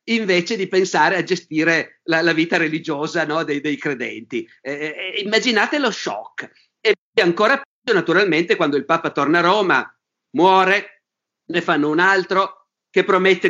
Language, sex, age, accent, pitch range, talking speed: Italian, male, 50-69, native, 160-215 Hz, 150 wpm